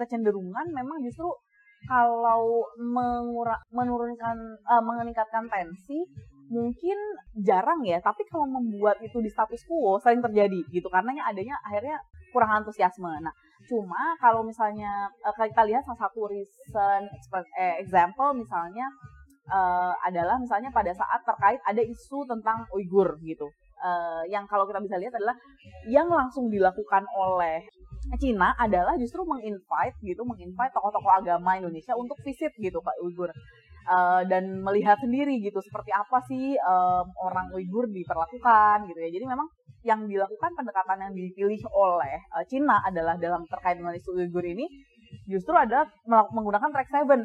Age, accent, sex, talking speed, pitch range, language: 20-39, native, female, 145 wpm, 185-245 Hz, Indonesian